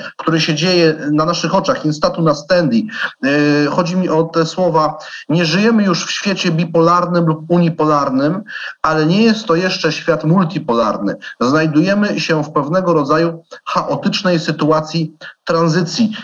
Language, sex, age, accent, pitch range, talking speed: Polish, male, 40-59, native, 165-190 Hz, 135 wpm